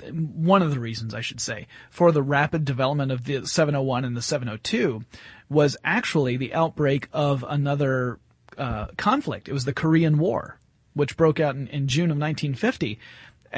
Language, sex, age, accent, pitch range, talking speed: English, male, 30-49, American, 140-175 Hz, 170 wpm